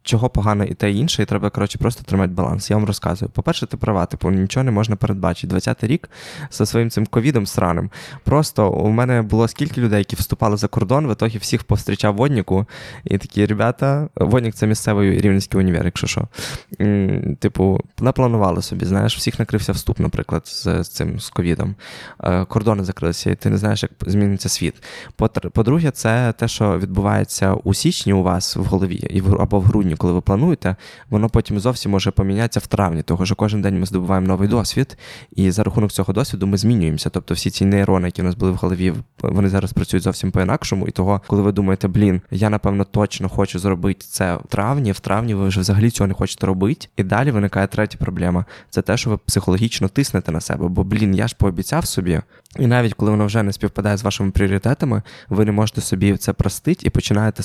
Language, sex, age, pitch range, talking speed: Ukrainian, male, 20-39, 95-115 Hz, 200 wpm